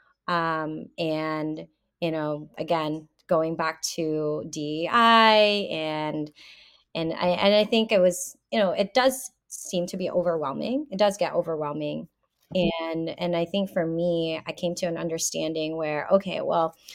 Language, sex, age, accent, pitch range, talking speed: English, female, 20-39, American, 155-180 Hz, 150 wpm